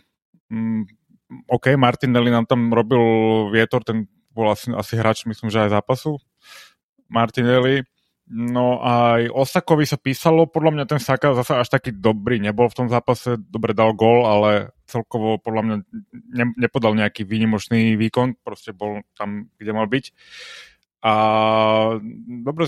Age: 30-49